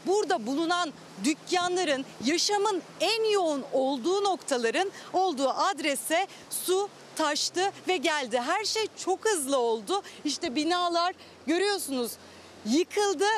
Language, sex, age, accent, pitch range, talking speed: Turkish, female, 40-59, native, 290-385 Hz, 105 wpm